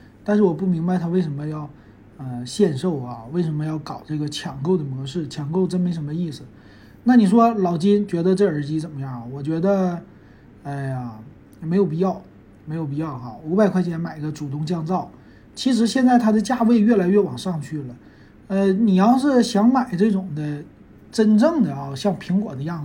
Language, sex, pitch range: Chinese, male, 145-200 Hz